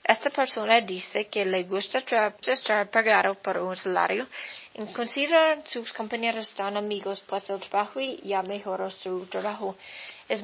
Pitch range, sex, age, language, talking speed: 195-240 Hz, female, 20-39, English, 160 wpm